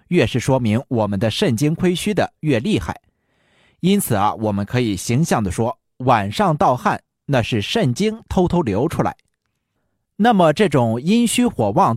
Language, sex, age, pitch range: Chinese, male, 30-49, 115-180 Hz